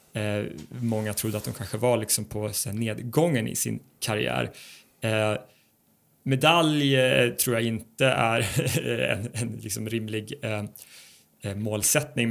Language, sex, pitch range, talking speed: English, male, 105-120 Hz, 125 wpm